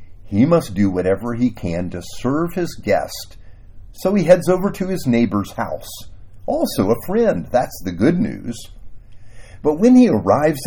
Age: 50-69